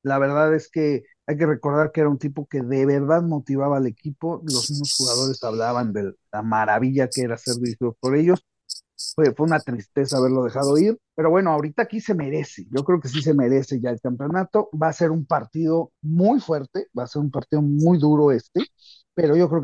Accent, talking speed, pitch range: Mexican, 215 wpm, 125-165 Hz